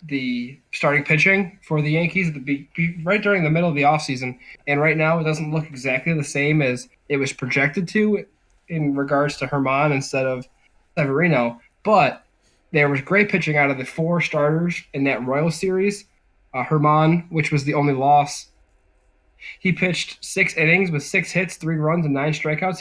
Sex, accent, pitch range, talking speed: male, American, 140-165 Hz, 180 wpm